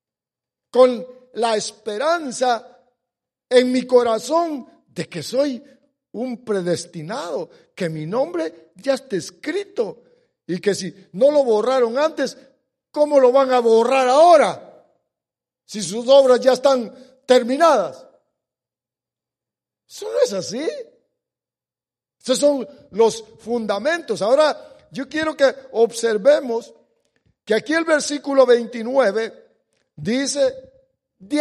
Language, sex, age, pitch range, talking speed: English, male, 60-79, 195-275 Hz, 105 wpm